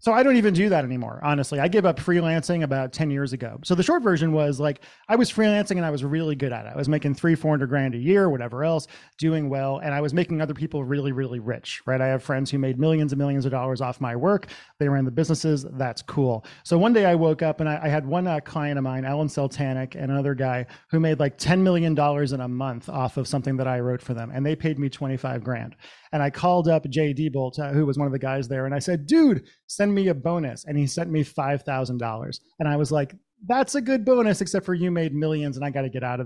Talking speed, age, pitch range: 275 wpm, 30-49, 135-165 Hz